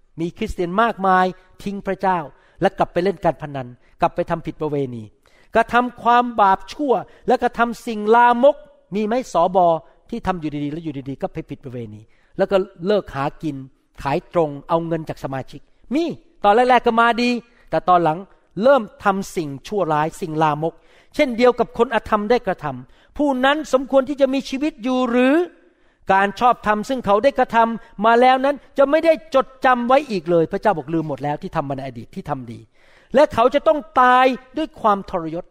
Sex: male